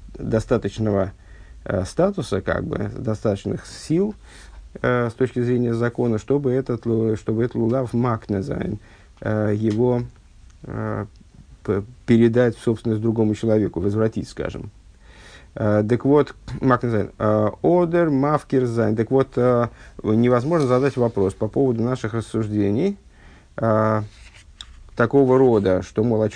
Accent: native